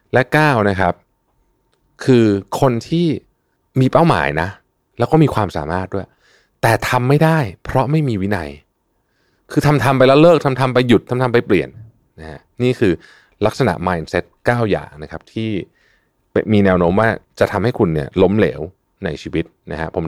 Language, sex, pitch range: Thai, male, 90-130 Hz